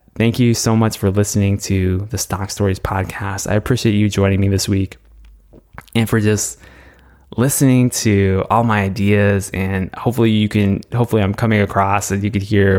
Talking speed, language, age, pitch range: 180 wpm, English, 20-39, 95-110 Hz